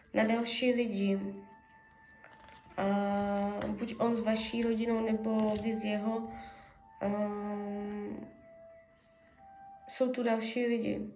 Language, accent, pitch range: Czech, native, 200-225 Hz